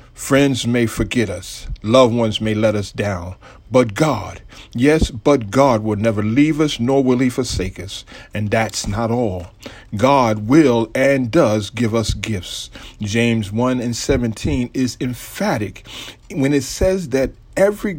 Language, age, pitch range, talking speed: English, 50-69, 105-135 Hz, 155 wpm